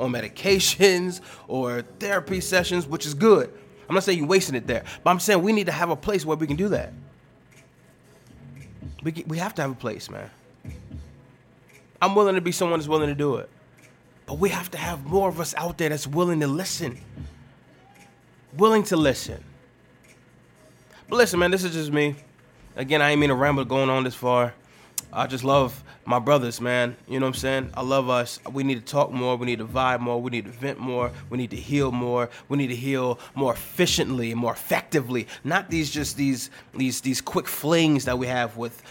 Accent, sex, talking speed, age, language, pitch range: American, male, 210 wpm, 20-39, English, 125-160 Hz